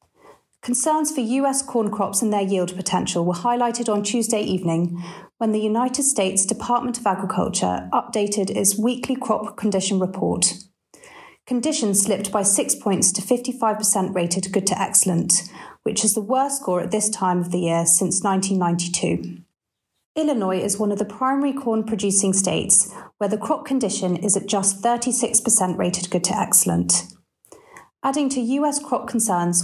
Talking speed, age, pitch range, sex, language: 155 wpm, 40-59, 185-240 Hz, female, English